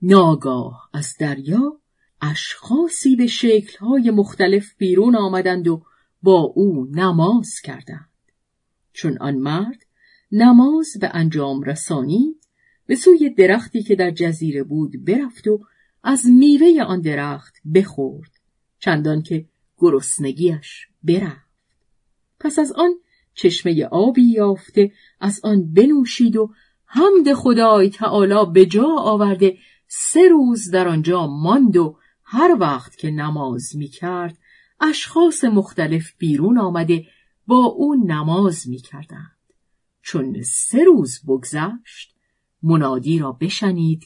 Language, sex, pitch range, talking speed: Persian, female, 155-235 Hz, 110 wpm